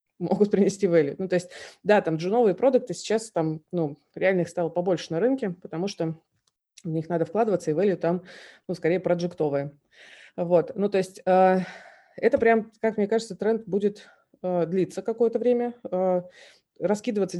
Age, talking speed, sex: 20-39, 160 wpm, female